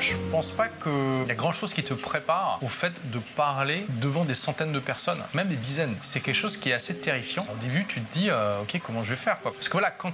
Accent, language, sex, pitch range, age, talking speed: French, French, male, 135-180 Hz, 20-39, 270 wpm